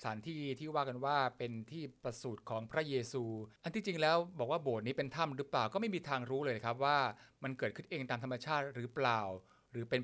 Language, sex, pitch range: Thai, male, 120-150 Hz